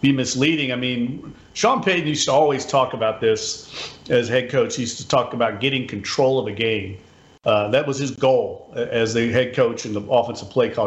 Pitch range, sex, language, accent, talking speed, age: 115-150 Hz, male, English, American, 215 wpm, 40-59